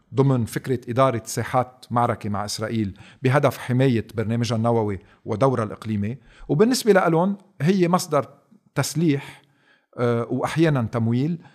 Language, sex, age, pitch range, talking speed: Arabic, male, 40-59, 110-150 Hz, 105 wpm